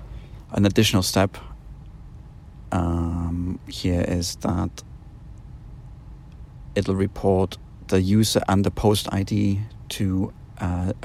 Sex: male